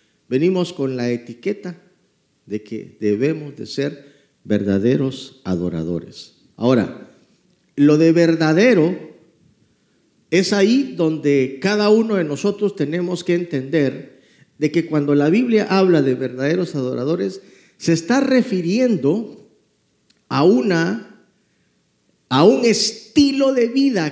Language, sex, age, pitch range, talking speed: Spanish, male, 50-69, 145-205 Hz, 110 wpm